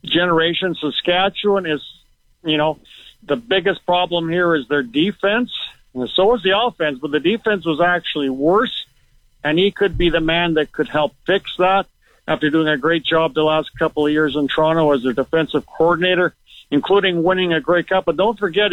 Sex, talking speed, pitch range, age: male, 185 wpm, 150-180 Hz, 50-69